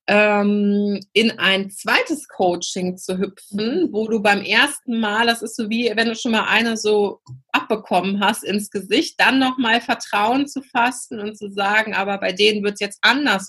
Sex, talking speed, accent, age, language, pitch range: female, 180 wpm, German, 30-49, German, 180-225 Hz